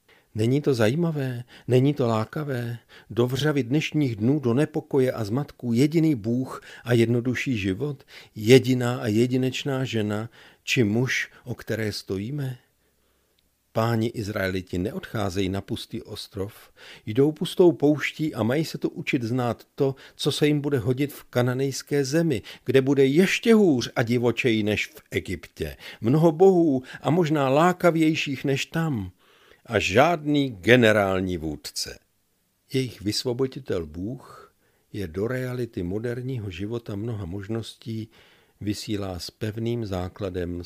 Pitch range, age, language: 100-135 Hz, 50-69, Czech